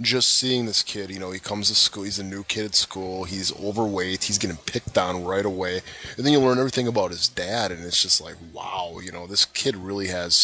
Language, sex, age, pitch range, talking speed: English, male, 20-39, 95-110 Hz, 245 wpm